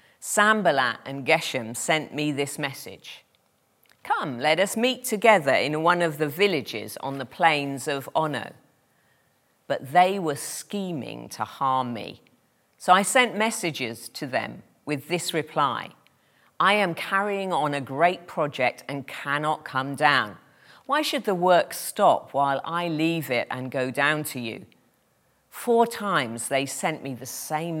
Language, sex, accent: English, female, British